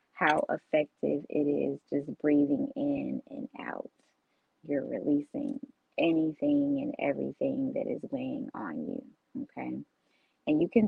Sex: female